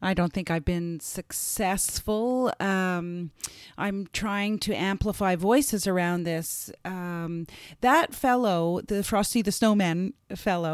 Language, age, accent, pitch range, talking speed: English, 30-49, American, 180-230 Hz, 125 wpm